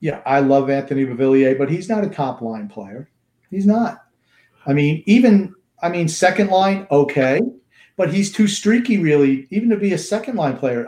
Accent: American